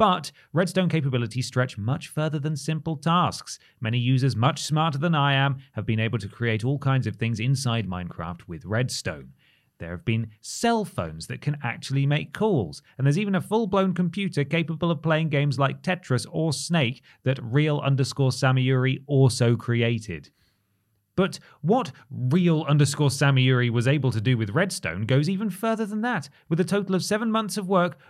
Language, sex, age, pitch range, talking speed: English, male, 30-49, 115-160 Hz, 175 wpm